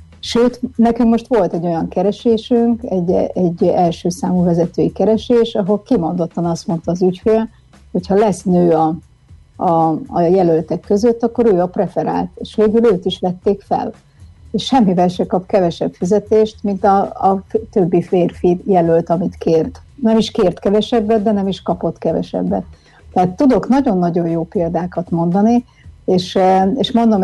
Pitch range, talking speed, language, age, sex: 170-210 Hz, 155 wpm, Hungarian, 60-79, female